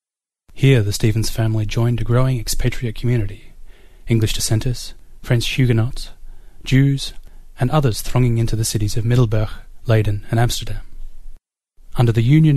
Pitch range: 100-125 Hz